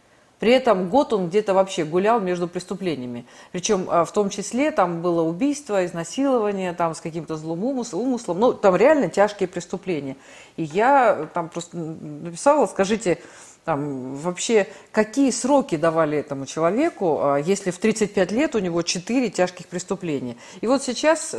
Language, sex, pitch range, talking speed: Russian, female, 165-220 Hz, 145 wpm